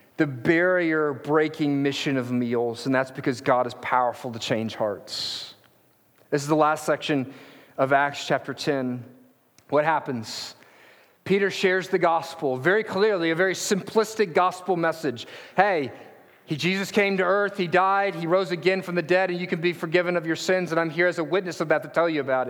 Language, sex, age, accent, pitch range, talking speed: English, male, 40-59, American, 155-205 Hz, 185 wpm